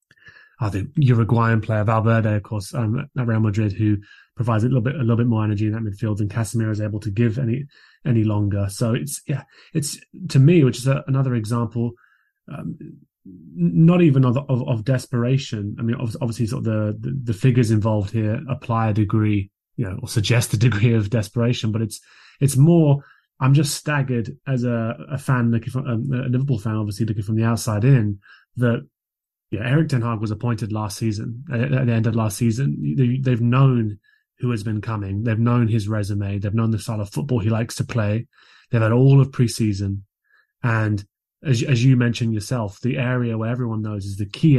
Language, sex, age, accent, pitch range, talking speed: English, male, 20-39, British, 110-125 Hz, 205 wpm